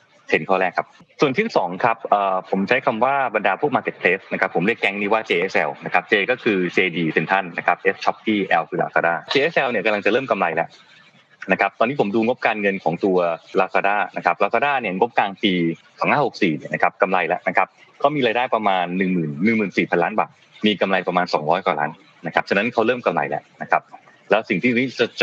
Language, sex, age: Thai, male, 20-39